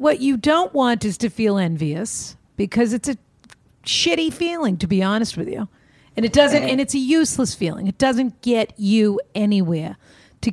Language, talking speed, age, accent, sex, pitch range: English, 180 wpm, 50-69, American, female, 185-250 Hz